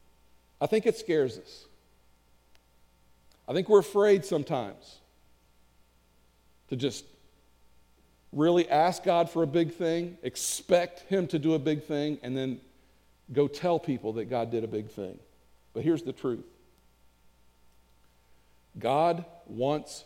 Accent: American